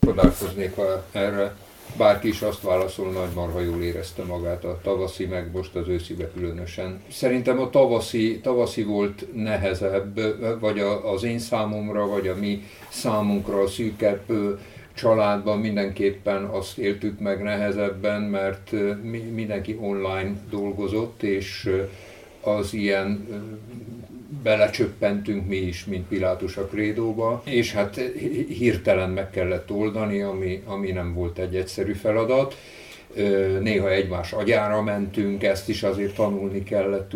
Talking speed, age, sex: 125 wpm, 60-79, male